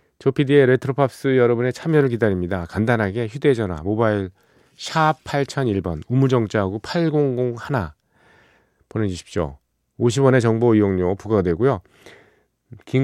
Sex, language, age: male, Korean, 40-59